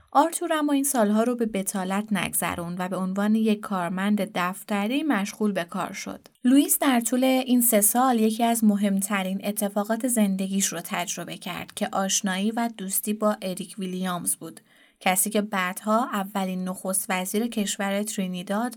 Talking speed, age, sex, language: 155 wpm, 20-39, female, Persian